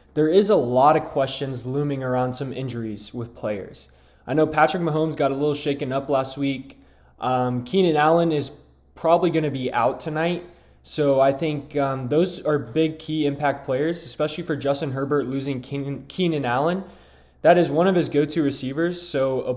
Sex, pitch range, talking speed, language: male, 125-150 Hz, 180 wpm, English